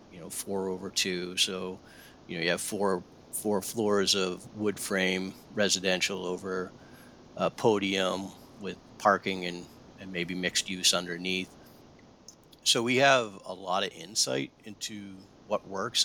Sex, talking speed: male, 140 wpm